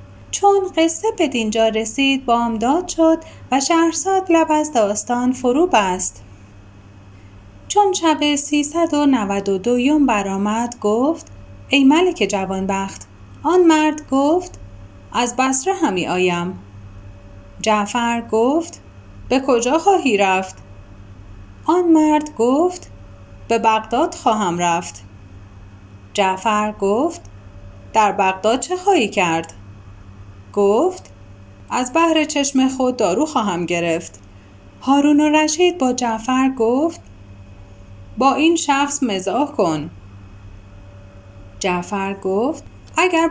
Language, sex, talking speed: Persian, female, 105 wpm